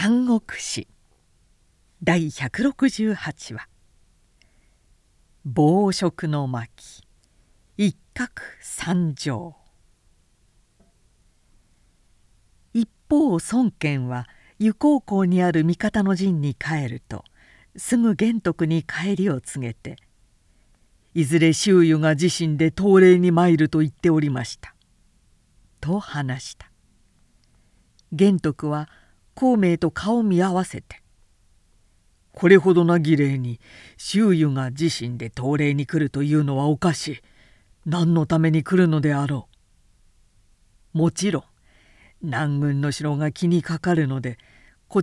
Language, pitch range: Japanese, 125-185 Hz